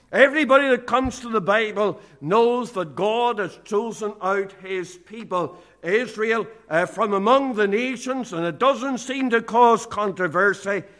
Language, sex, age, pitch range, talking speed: English, male, 60-79, 185-235 Hz, 145 wpm